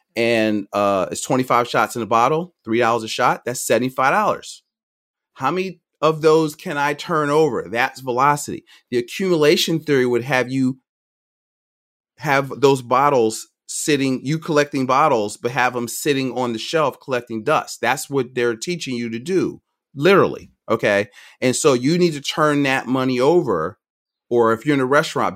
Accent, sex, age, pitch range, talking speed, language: American, male, 30-49, 115-140 Hz, 165 wpm, English